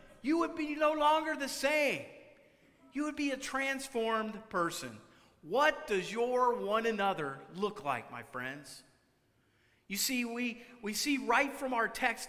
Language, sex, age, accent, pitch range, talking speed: English, male, 40-59, American, 195-255 Hz, 150 wpm